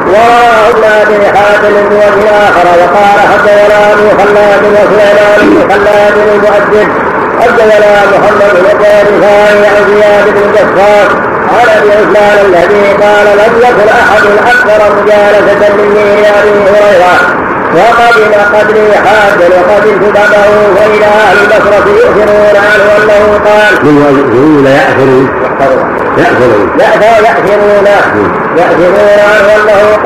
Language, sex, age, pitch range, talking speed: Arabic, female, 50-69, 205-210 Hz, 80 wpm